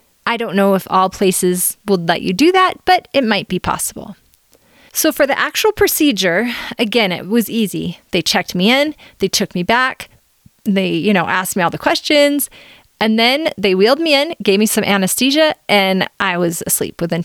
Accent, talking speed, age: American, 195 wpm, 30-49